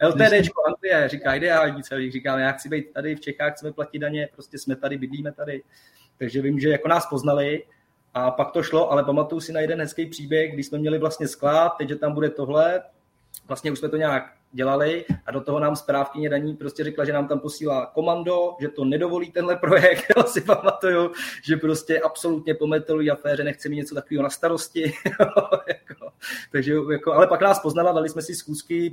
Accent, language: native, Czech